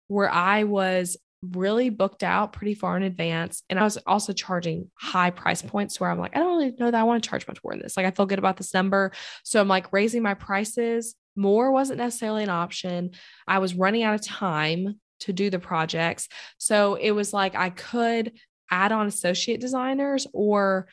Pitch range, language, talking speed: 175-210 Hz, English, 210 wpm